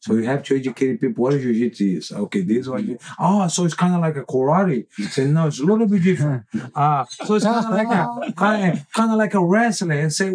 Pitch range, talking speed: 125-190 Hz, 255 wpm